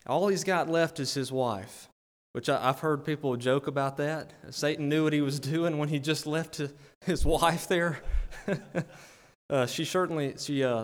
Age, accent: 30-49, American